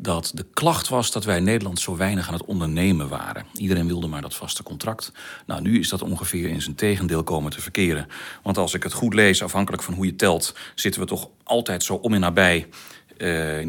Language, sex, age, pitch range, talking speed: Dutch, male, 40-59, 85-115 Hz, 230 wpm